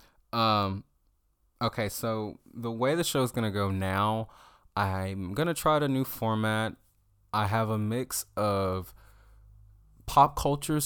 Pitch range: 80-110 Hz